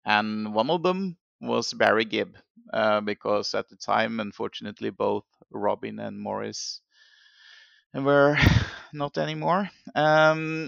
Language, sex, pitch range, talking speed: English, male, 115-155 Hz, 120 wpm